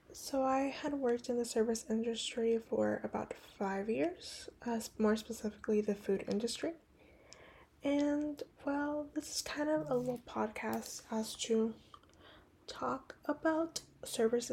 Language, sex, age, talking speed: English, female, 10-29, 135 wpm